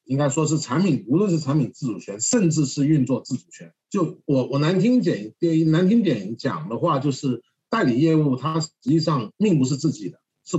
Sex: male